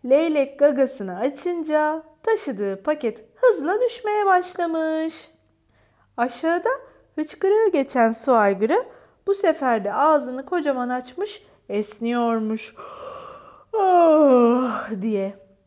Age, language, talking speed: 30-49, Turkish, 80 wpm